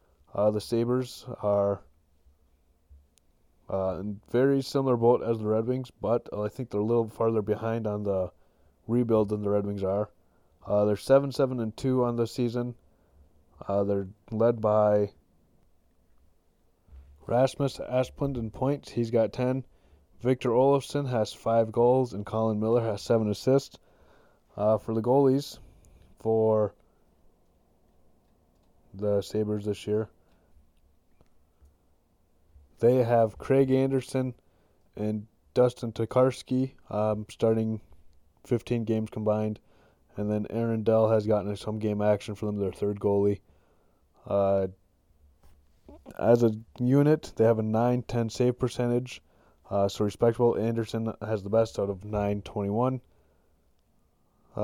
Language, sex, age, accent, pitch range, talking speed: English, male, 20-39, American, 90-120 Hz, 125 wpm